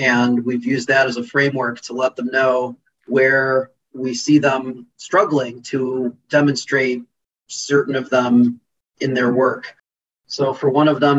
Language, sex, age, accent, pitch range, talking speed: English, male, 40-59, American, 125-140 Hz, 155 wpm